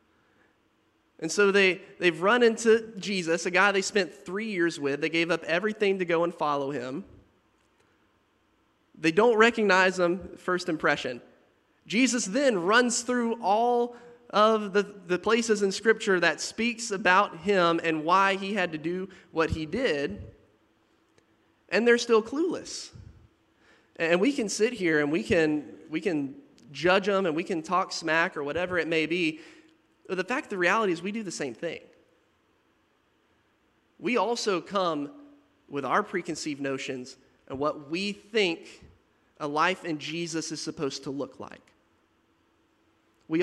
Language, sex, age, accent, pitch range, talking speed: English, male, 30-49, American, 160-210 Hz, 155 wpm